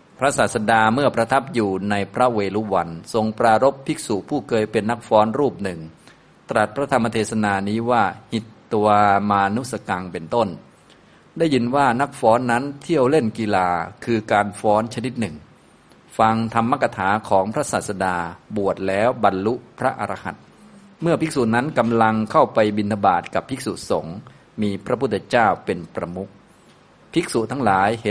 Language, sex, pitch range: Thai, male, 100-125 Hz